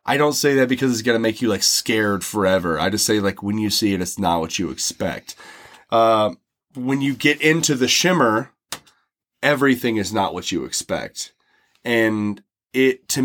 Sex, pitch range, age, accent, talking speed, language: male, 105-140 Hz, 30-49, American, 190 wpm, English